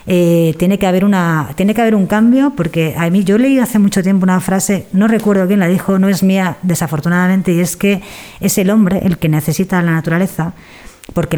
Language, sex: Spanish, female